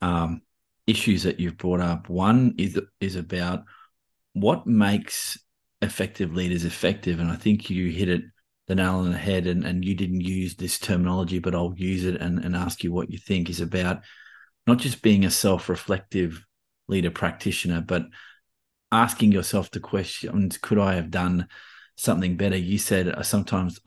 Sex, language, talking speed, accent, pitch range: male, English, 170 wpm, Australian, 90-100 Hz